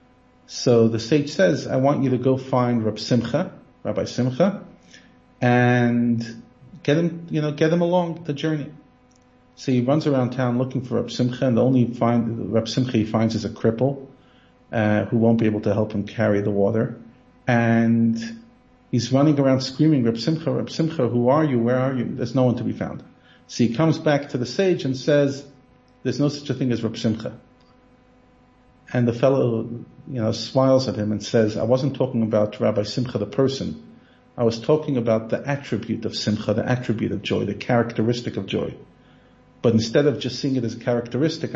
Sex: male